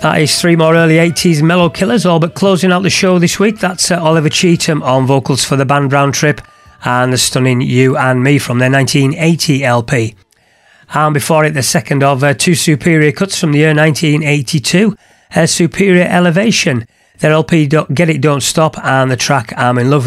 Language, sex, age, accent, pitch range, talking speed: English, male, 30-49, British, 130-175 Hz, 195 wpm